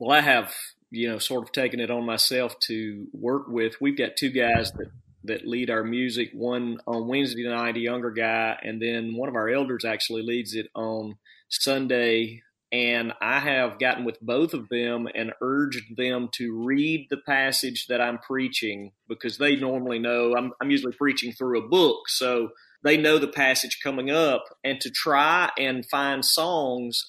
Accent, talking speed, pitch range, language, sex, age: American, 185 wpm, 120-140 Hz, English, male, 30-49